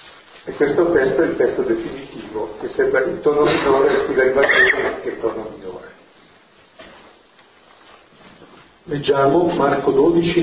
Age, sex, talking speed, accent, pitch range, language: 50-69, male, 120 wpm, native, 125-170 Hz, Italian